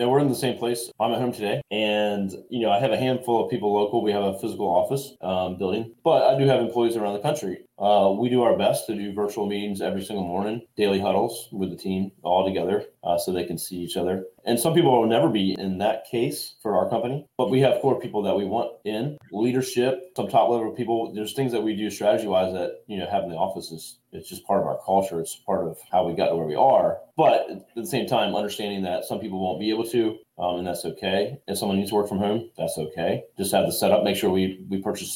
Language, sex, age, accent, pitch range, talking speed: English, male, 20-39, American, 95-120 Hz, 255 wpm